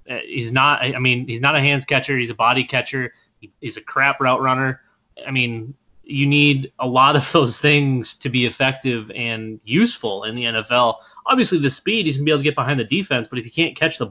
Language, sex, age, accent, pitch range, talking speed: English, male, 20-39, American, 115-140 Hz, 230 wpm